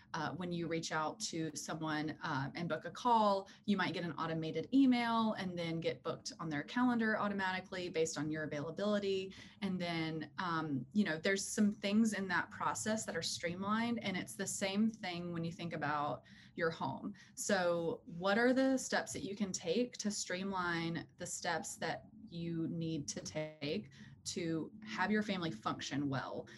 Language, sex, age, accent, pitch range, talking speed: English, female, 20-39, American, 165-205 Hz, 180 wpm